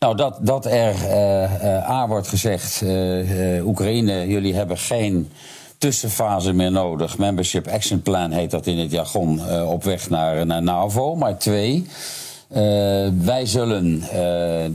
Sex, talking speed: male, 155 wpm